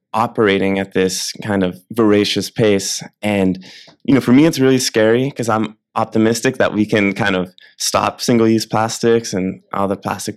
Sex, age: male, 20-39